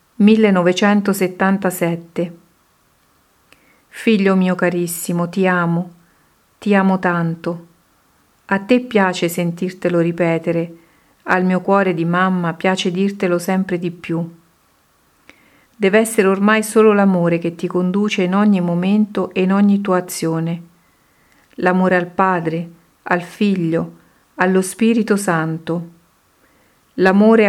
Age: 50-69